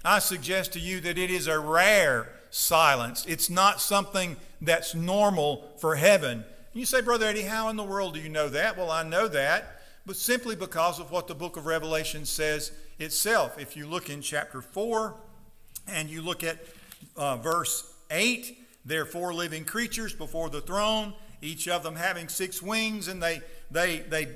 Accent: American